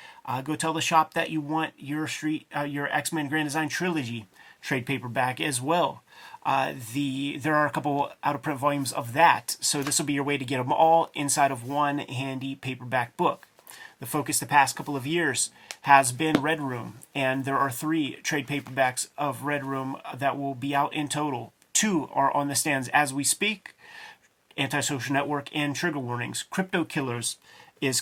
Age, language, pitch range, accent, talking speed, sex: 30-49, English, 135-155 Hz, American, 190 wpm, male